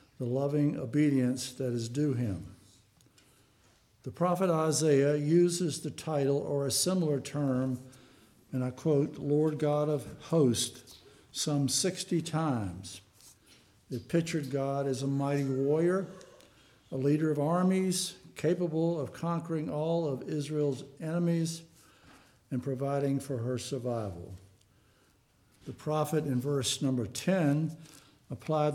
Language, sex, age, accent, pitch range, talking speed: English, male, 60-79, American, 130-160 Hz, 120 wpm